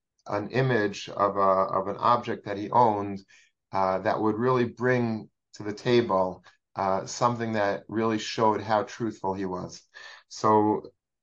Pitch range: 105-125 Hz